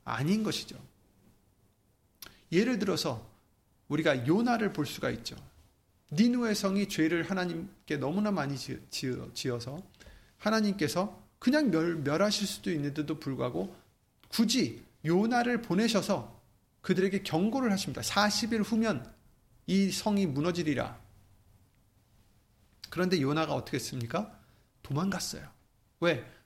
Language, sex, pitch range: Korean, male, 135-195 Hz